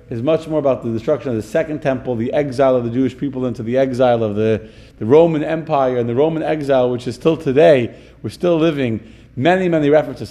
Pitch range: 120-155 Hz